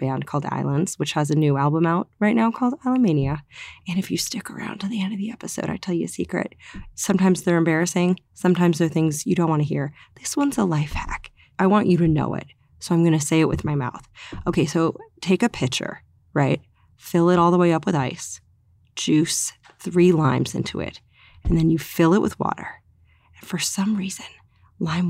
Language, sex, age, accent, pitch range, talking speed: English, female, 30-49, American, 145-195 Hz, 220 wpm